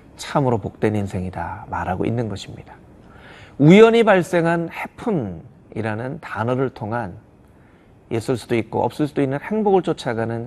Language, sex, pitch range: Korean, male, 105-140 Hz